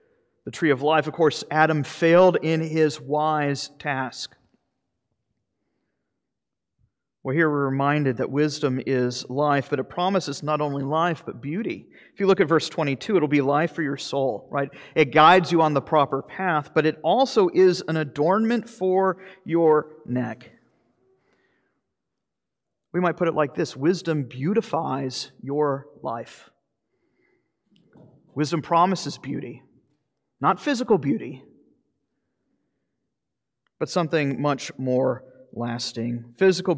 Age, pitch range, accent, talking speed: 40-59, 130-165 Hz, American, 130 wpm